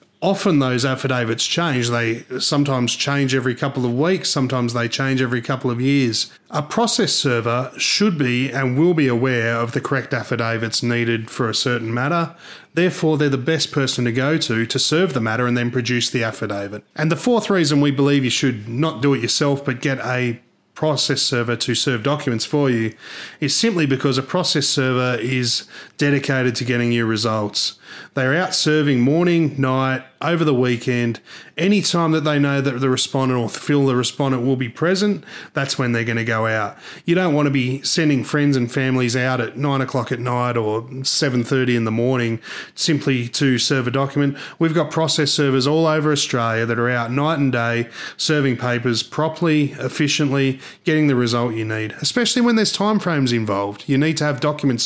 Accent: Australian